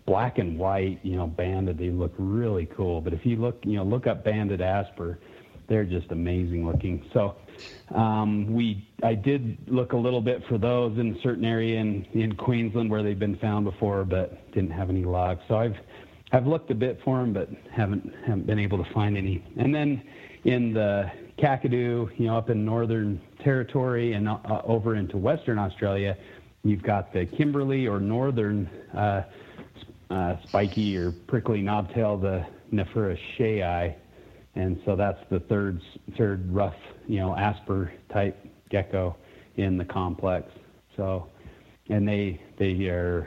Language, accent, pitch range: English, American, 95-115 Hz